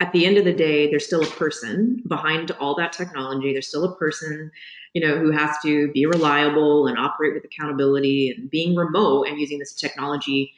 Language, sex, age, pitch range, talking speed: English, female, 30-49, 145-170 Hz, 205 wpm